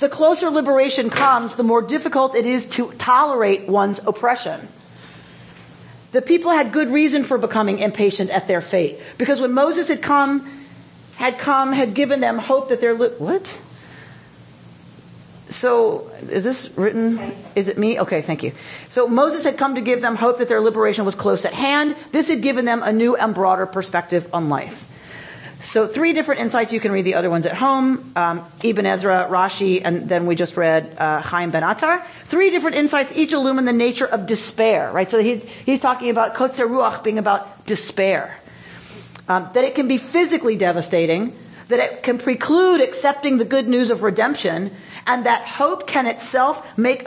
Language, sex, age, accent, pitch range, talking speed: English, female, 40-59, American, 190-270 Hz, 180 wpm